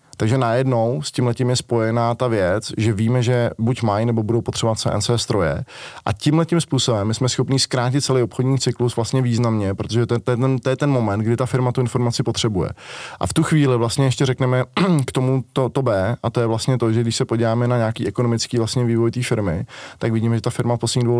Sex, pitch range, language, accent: male, 115-130 Hz, Czech, native